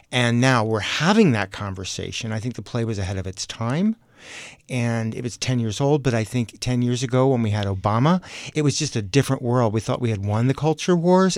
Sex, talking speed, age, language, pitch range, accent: male, 235 wpm, 50-69, English, 105-125 Hz, American